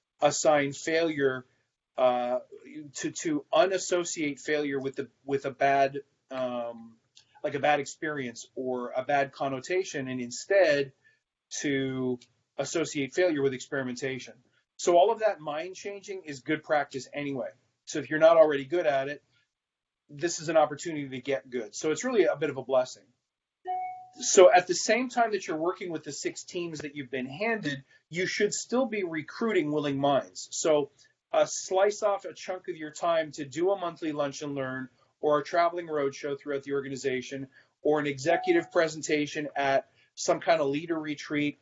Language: English